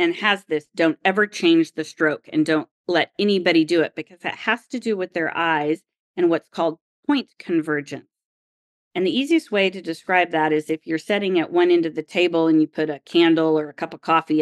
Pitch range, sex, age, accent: 155-200 Hz, female, 40-59, American